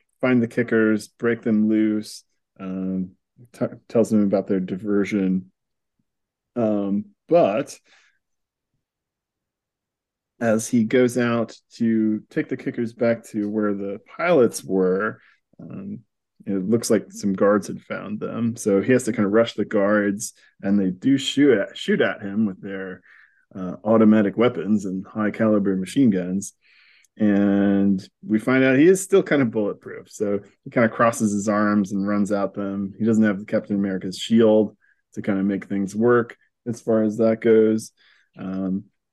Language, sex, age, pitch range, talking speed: English, male, 20-39, 100-115 Hz, 155 wpm